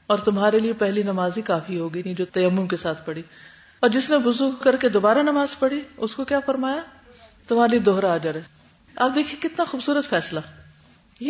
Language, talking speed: Urdu, 195 wpm